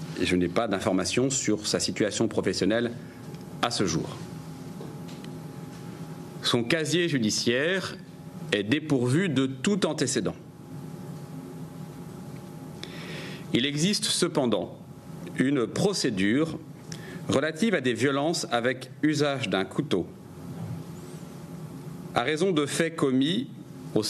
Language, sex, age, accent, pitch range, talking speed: French, male, 40-59, French, 110-150 Hz, 95 wpm